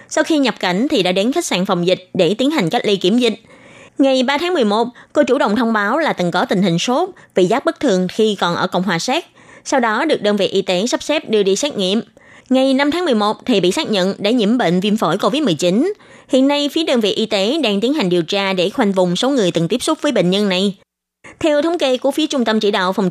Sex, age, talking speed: female, 20-39, 270 wpm